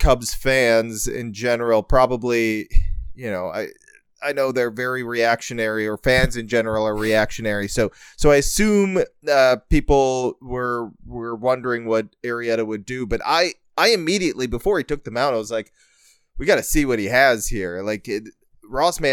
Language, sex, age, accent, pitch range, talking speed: English, male, 30-49, American, 110-135 Hz, 175 wpm